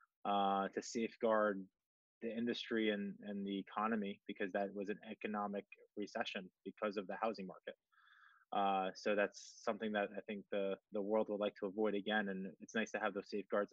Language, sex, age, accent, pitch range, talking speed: English, male, 20-39, American, 100-110 Hz, 185 wpm